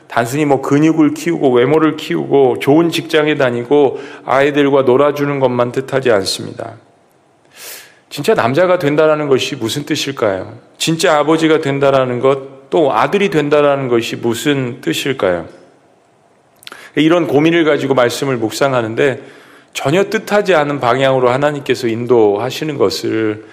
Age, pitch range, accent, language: 40-59, 120-155 Hz, native, Korean